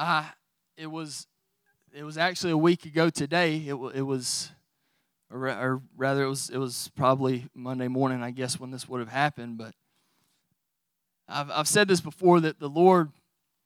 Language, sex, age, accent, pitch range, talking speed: English, male, 20-39, American, 135-165 Hz, 165 wpm